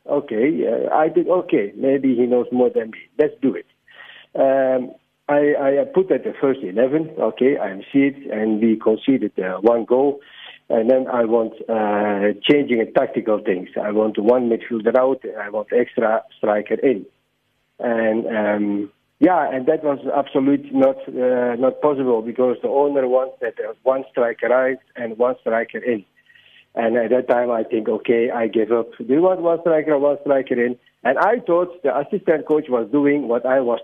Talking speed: 185 wpm